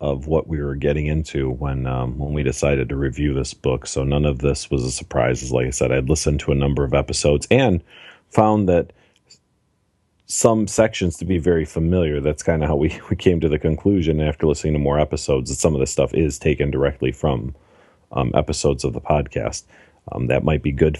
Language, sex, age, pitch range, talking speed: English, male, 40-59, 70-85 Hz, 215 wpm